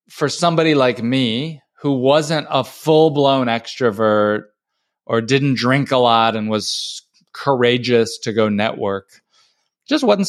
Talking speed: 135 wpm